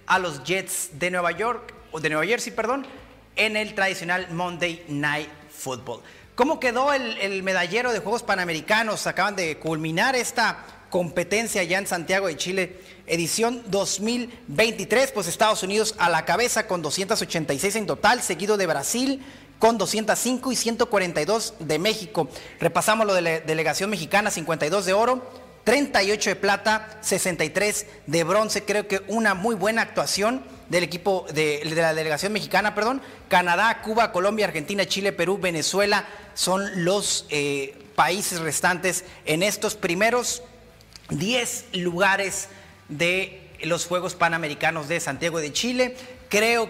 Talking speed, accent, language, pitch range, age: 145 wpm, Mexican, Spanish, 170-220 Hz, 30-49